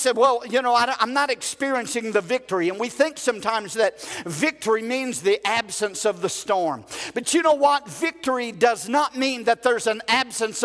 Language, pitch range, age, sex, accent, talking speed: English, 230-270 Hz, 50-69, male, American, 185 wpm